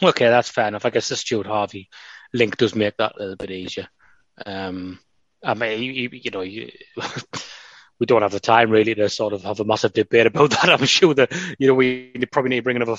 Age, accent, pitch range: 20-39, British, 105-120 Hz